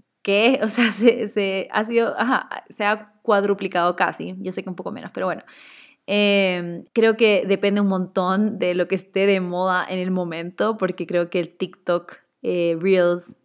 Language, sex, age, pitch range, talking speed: Spanish, female, 20-39, 180-215 Hz, 185 wpm